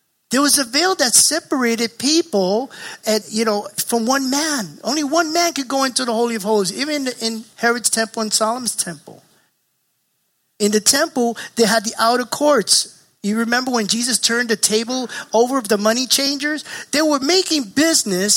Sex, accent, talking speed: male, American, 175 wpm